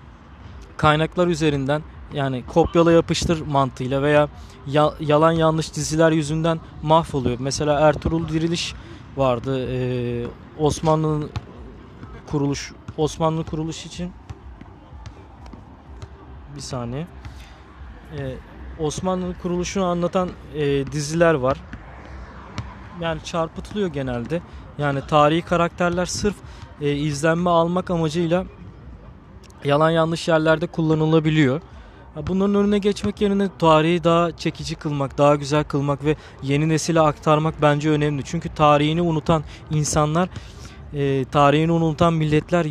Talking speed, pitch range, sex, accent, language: 100 wpm, 145-170 Hz, male, native, Turkish